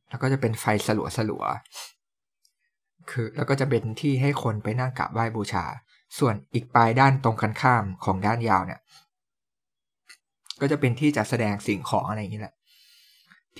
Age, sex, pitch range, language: 20-39, male, 105-130 Hz, Thai